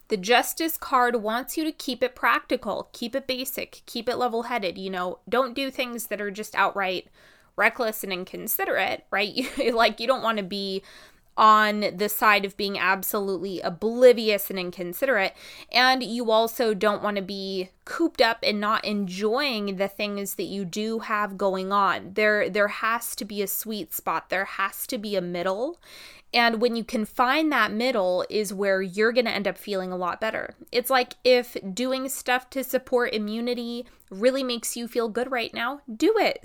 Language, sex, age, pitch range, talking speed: English, female, 20-39, 195-255 Hz, 185 wpm